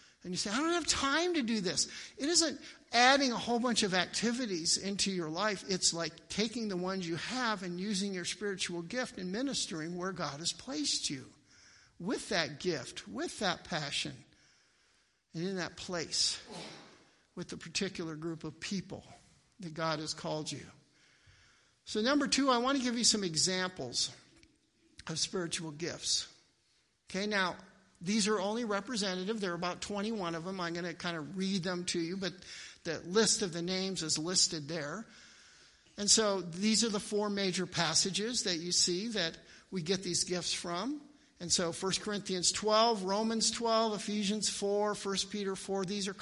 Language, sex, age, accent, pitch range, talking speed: English, male, 60-79, American, 175-225 Hz, 175 wpm